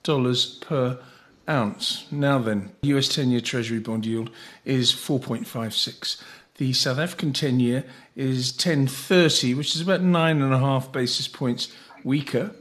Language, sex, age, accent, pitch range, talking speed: English, male, 50-69, British, 125-165 Hz, 135 wpm